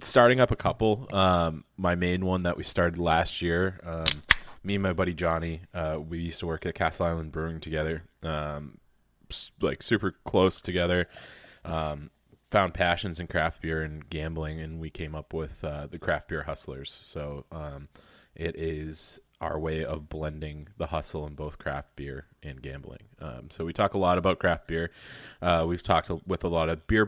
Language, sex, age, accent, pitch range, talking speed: English, male, 20-39, American, 75-90 Hz, 190 wpm